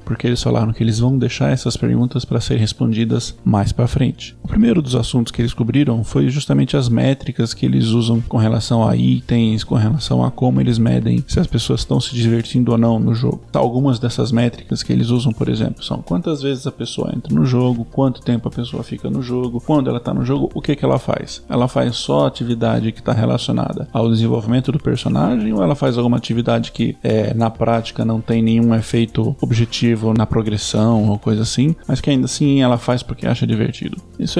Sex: male